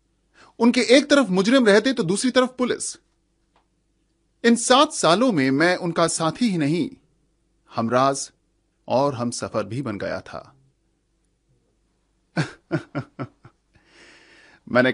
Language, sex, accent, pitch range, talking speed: Hindi, male, native, 120-175 Hz, 115 wpm